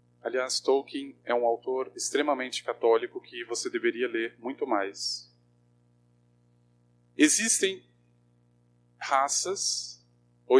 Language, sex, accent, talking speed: Portuguese, male, Brazilian, 90 wpm